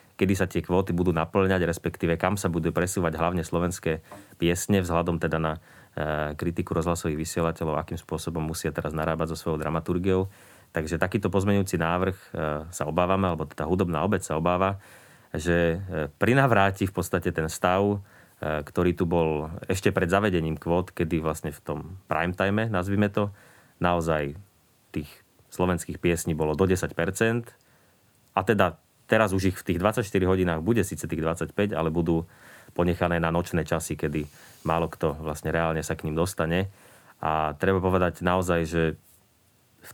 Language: Slovak